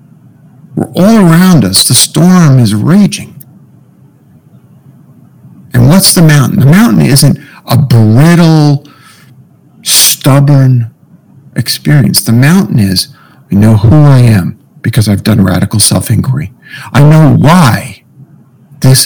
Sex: male